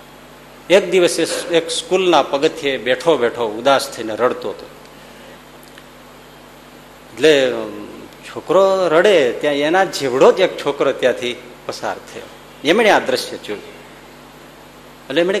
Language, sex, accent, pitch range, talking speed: Gujarati, male, native, 125-195 Hz, 50 wpm